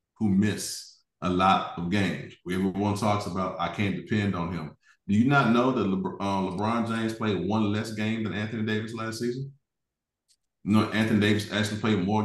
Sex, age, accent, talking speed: male, 30-49, American, 200 wpm